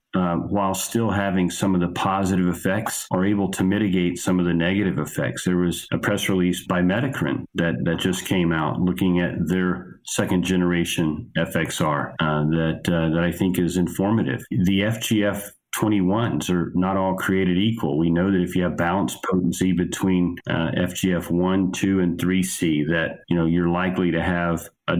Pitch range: 85-95 Hz